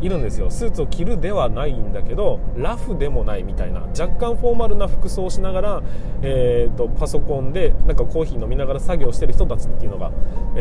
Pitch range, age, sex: 115-170 Hz, 20-39, male